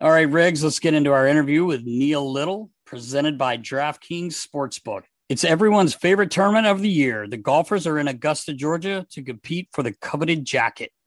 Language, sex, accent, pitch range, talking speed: English, male, American, 140-180 Hz, 185 wpm